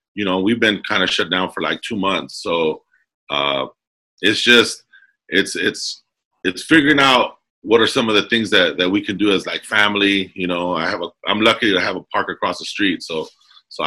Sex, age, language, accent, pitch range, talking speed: male, 30-49, English, American, 95-120 Hz, 220 wpm